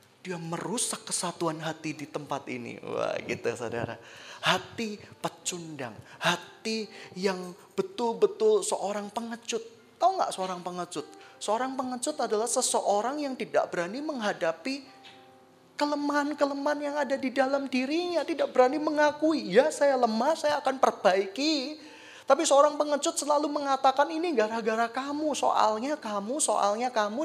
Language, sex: Indonesian, male